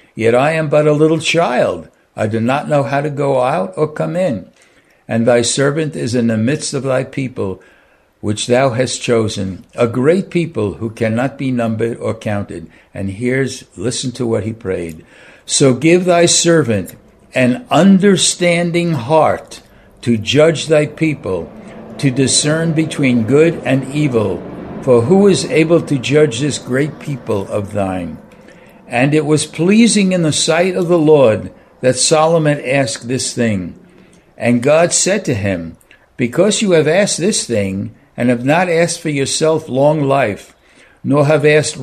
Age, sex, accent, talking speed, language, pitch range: 60-79, male, American, 160 wpm, English, 120-160 Hz